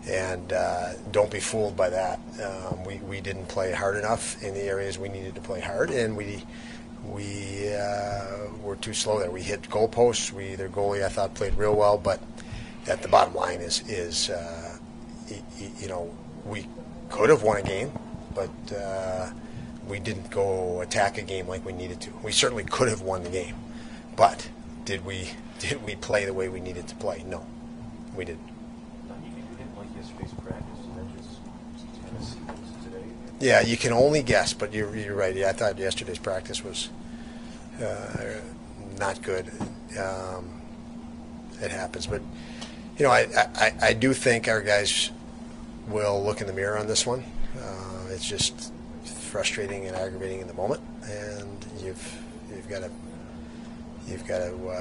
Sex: male